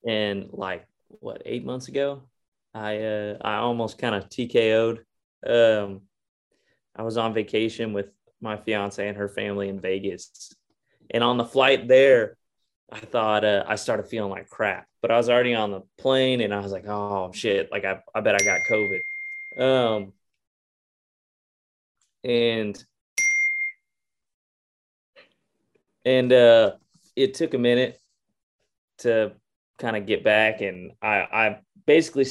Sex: male